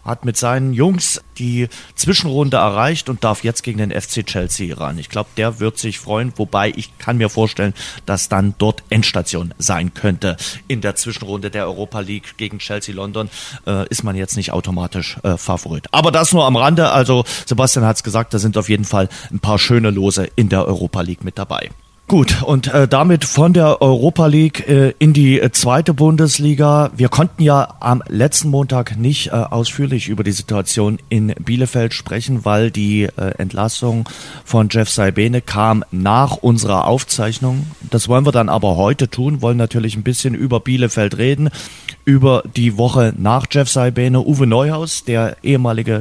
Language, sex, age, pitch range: German, male, 40-59, 105-135 Hz